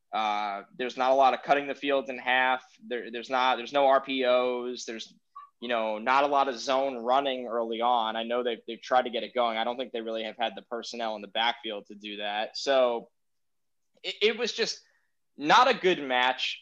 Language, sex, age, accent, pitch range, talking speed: English, male, 20-39, American, 120-160 Hz, 220 wpm